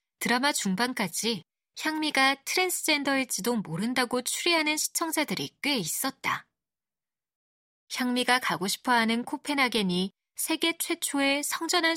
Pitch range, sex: 205-295 Hz, female